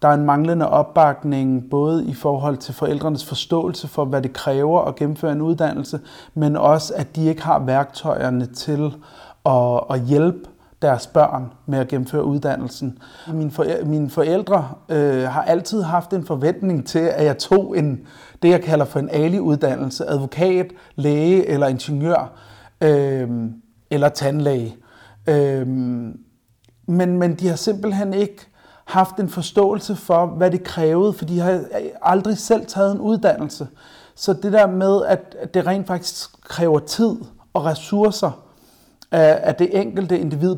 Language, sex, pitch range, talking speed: Danish, male, 145-180 Hz, 145 wpm